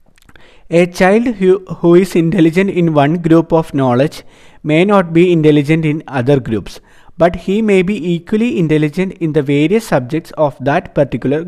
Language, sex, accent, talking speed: Malayalam, male, native, 160 wpm